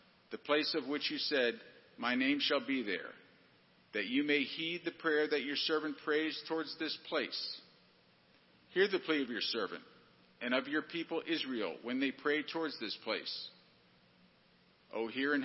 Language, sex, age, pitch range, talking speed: English, male, 50-69, 140-170 Hz, 170 wpm